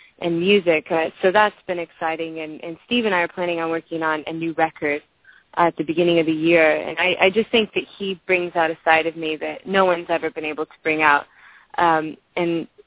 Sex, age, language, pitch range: female, 20-39, English, 160-180 Hz